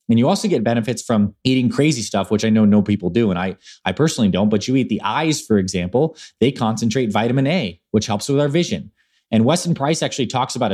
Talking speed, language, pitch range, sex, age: 235 wpm, English, 105-135 Hz, male, 20-39